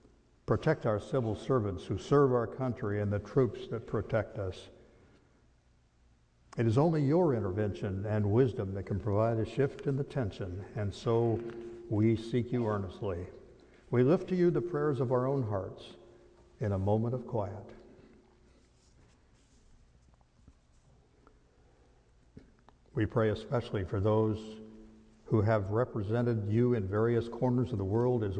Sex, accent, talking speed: male, American, 140 wpm